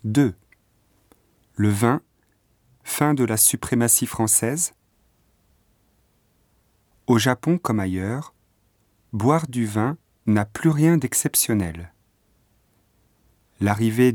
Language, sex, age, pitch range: Japanese, male, 40-59, 105-130 Hz